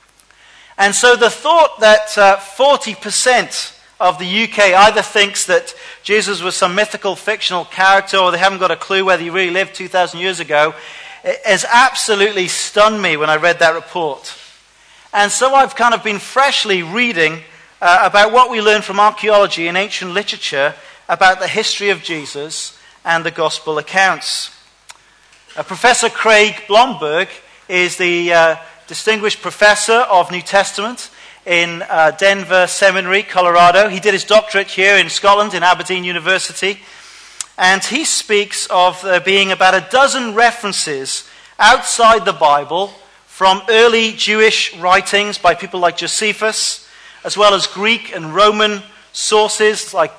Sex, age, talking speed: male, 40-59, 150 wpm